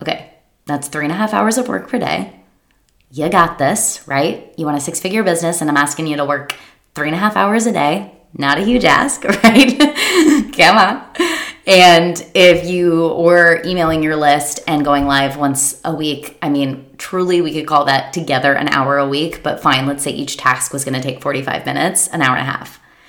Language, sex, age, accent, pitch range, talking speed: English, female, 20-39, American, 150-180 Hz, 215 wpm